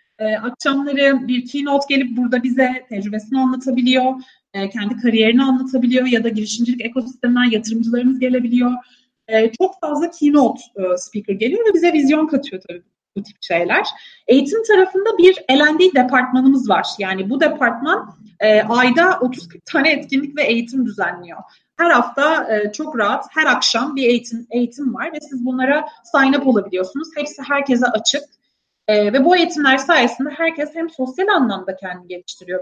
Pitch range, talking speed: 215-280 Hz, 140 wpm